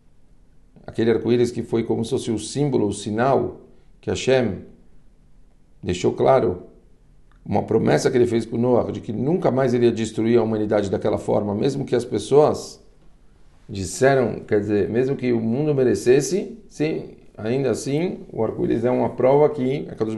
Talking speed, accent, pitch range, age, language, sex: 170 wpm, Brazilian, 110-130 Hz, 50-69, Portuguese, male